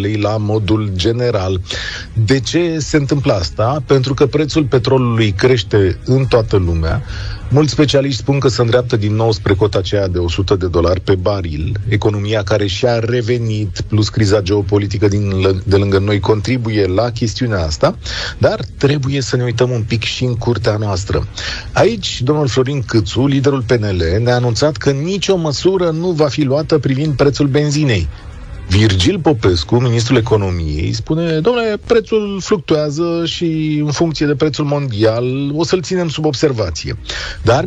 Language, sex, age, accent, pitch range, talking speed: Romanian, male, 40-59, native, 105-140 Hz, 155 wpm